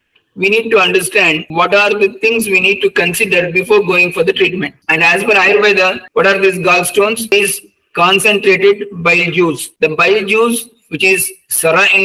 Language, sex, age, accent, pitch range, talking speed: English, male, 50-69, Indian, 175-210 Hz, 185 wpm